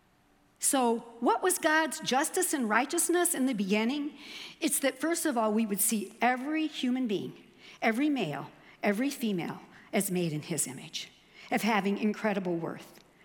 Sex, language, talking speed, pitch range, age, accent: female, English, 155 wpm, 215-310 Hz, 50-69, American